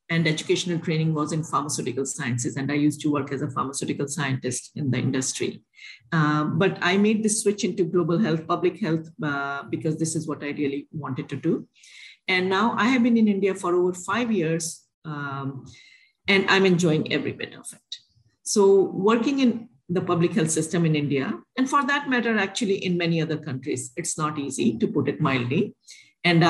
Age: 50-69